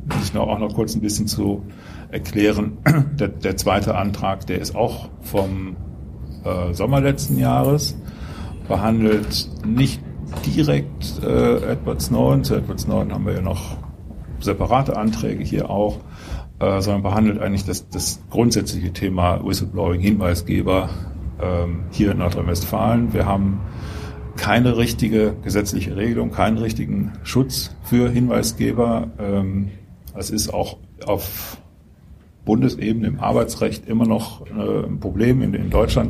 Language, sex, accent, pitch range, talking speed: German, male, German, 90-115 Hz, 125 wpm